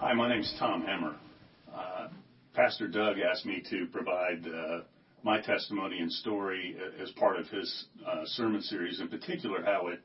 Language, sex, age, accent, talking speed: English, male, 40-59, American, 175 wpm